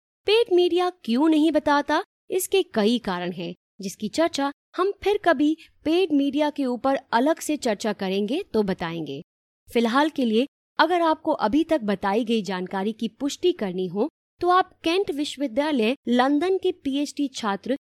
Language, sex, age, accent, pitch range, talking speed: Hindi, female, 20-39, native, 220-320 Hz, 155 wpm